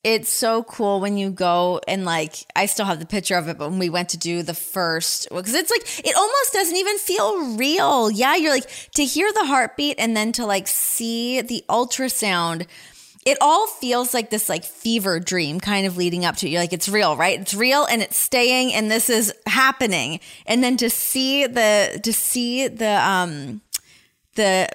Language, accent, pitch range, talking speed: English, American, 185-250 Hz, 205 wpm